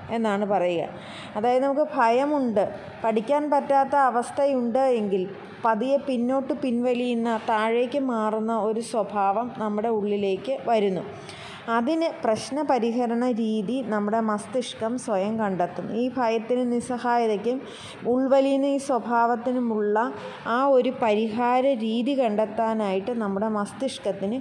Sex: female